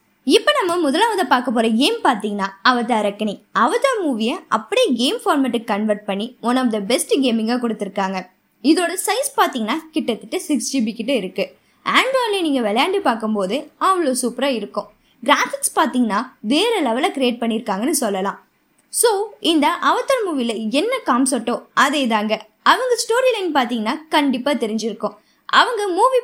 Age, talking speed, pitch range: 20-39, 140 wpm, 235-340 Hz